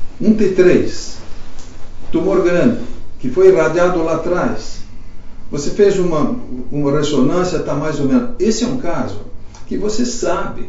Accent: Brazilian